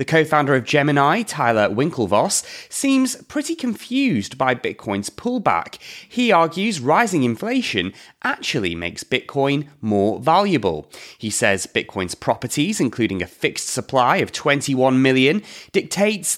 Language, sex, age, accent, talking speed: English, male, 30-49, British, 120 wpm